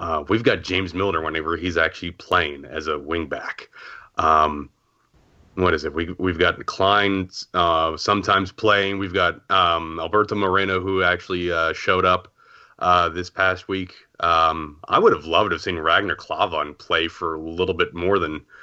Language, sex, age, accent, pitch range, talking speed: English, male, 30-49, American, 85-100 Hz, 175 wpm